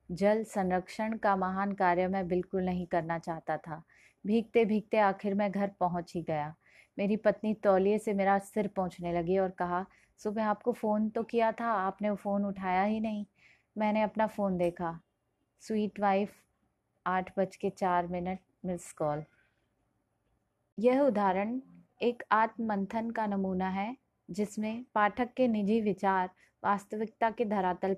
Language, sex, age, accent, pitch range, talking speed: Hindi, female, 30-49, native, 190-220 Hz, 145 wpm